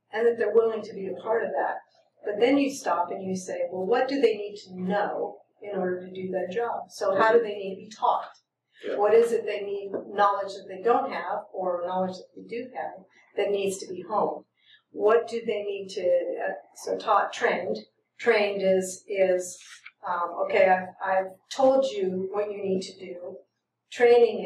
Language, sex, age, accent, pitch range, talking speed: English, female, 50-69, American, 185-210 Hz, 200 wpm